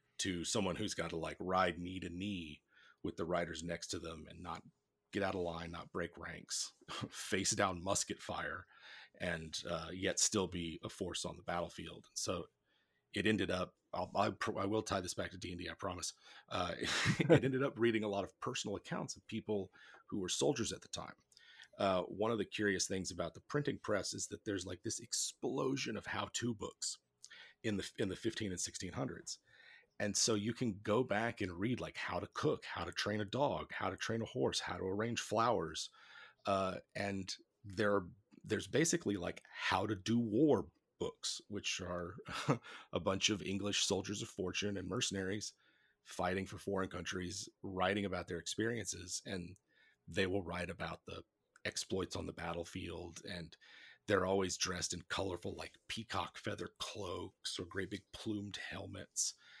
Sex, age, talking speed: male, 30-49, 185 wpm